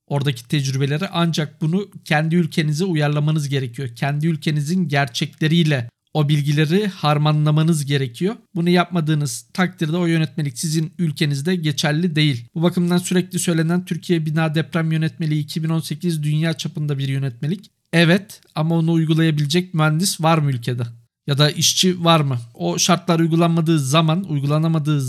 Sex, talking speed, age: male, 130 wpm, 50-69